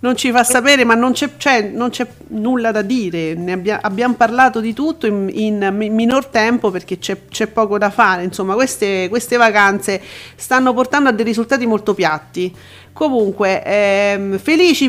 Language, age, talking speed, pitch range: Italian, 40-59, 155 wpm, 190-245 Hz